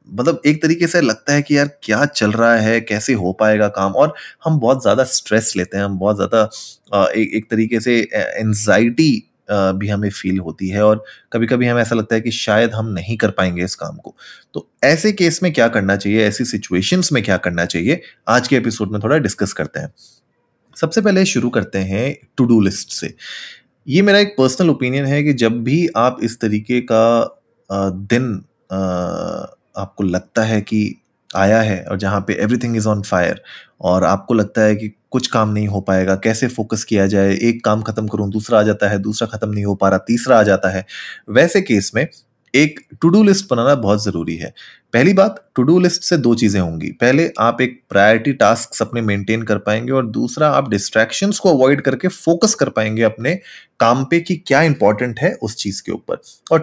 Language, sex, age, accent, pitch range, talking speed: Hindi, male, 20-39, native, 105-135 Hz, 200 wpm